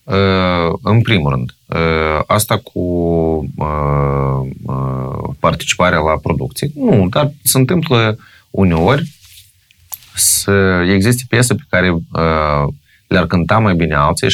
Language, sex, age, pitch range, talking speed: Romanian, male, 30-49, 80-105 Hz, 95 wpm